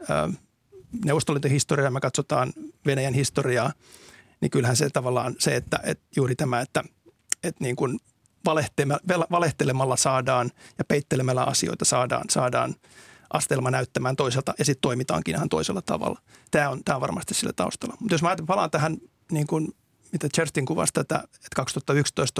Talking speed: 145 wpm